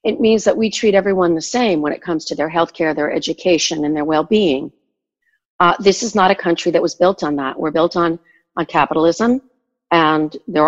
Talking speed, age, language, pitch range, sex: 215 wpm, 50-69, English, 155-205 Hz, female